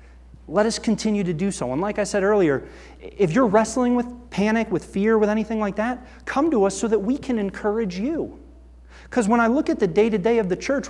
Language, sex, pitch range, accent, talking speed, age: English, male, 140-220 Hz, American, 225 wpm, 30-49